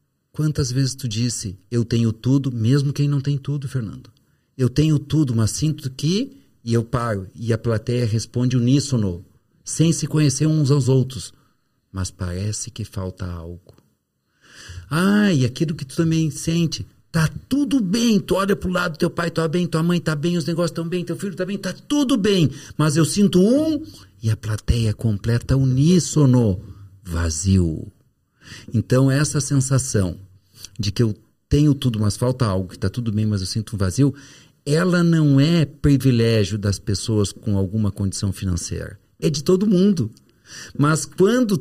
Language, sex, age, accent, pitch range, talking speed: Portuguese, male, 50-69, Brazilian, 110-160 Hz, 170 wpm